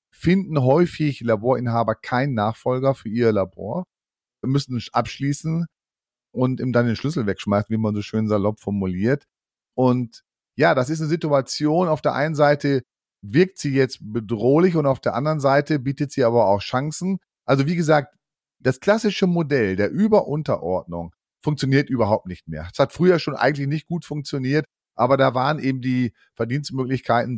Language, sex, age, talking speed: German, male, 40-59, 160 wpm